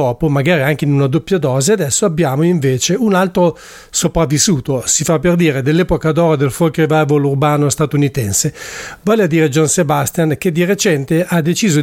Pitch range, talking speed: 145-170 Hz, 165 wpm